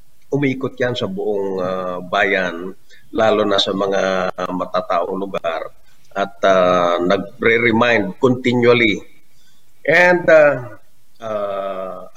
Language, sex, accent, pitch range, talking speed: Filipino, male, native, 115-160 Hz, 90 wpm